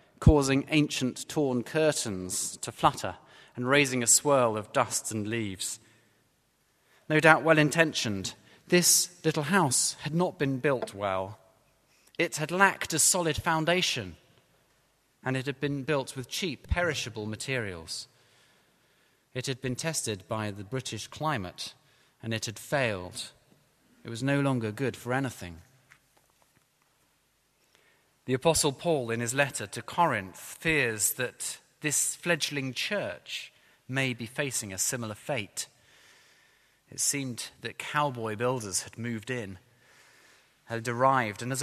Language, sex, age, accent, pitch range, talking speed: English, male, 30-49, British, 115-145 Hz, 130 wpm